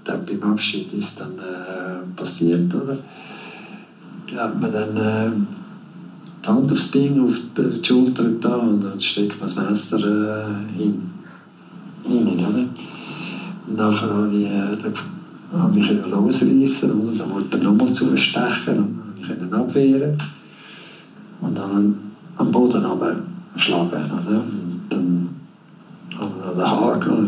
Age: 60-79